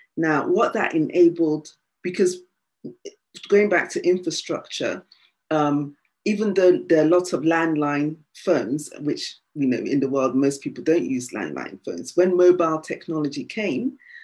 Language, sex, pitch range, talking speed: English, female, 145-185 Hz, 145 wpm